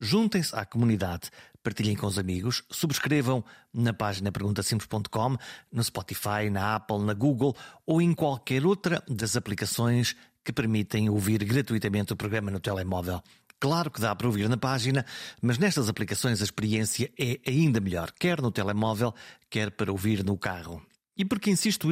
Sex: male